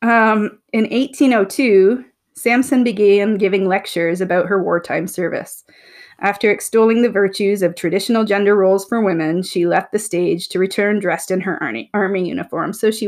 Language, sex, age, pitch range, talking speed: English, female, 30-49, 190-235 Hz, 160 wpm